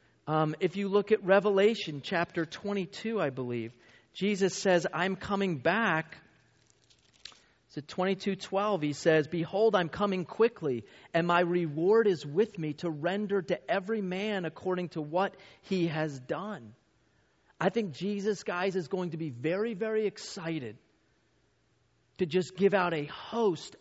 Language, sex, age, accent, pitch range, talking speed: English, male, 40-59, American, 155-200 Hz, 145 wpm